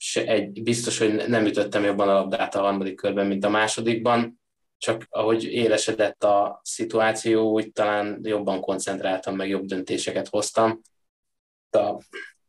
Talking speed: 135 wpm